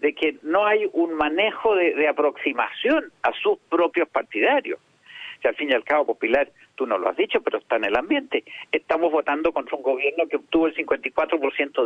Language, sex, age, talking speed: Spanish, male, 50-69, 195 wpm